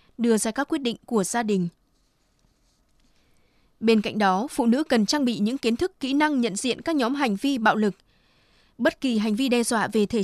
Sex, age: female, 20-39